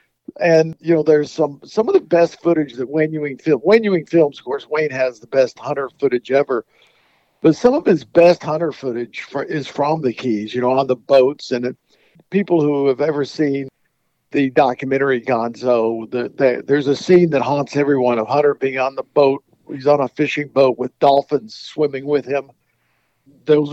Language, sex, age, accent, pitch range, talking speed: English, male, 50-69, American, 130-165 Hz, 195 wpm